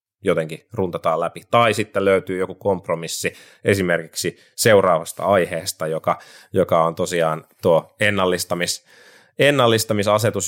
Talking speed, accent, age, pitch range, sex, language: 105 wpm, native, 30-49, 85-115 Hz, male, Finnish